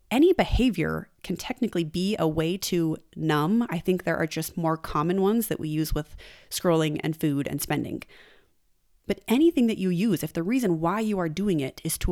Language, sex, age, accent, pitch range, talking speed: English, female, 30-49, American, 160-205 Hz, 205 wpm